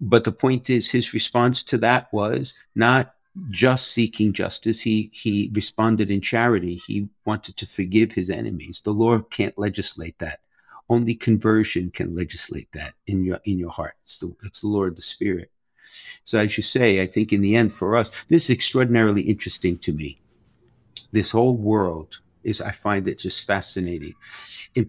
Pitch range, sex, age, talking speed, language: 100-120 Hz, male, 50-69, 175 wpm, English